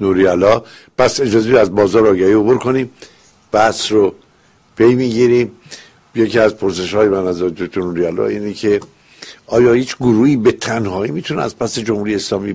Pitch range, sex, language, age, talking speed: 100-130 Hz, male, Persian, 60-79, 150 wpm